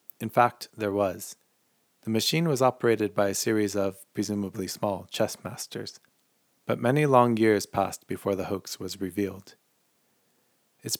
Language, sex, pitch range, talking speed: English, male, 100-115 Hz, 145 wpm